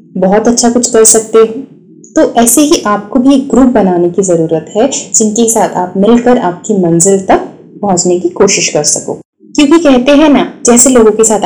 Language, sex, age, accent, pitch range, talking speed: Hindi, female, 20-39, native, 200-255 Hz, 195 wpm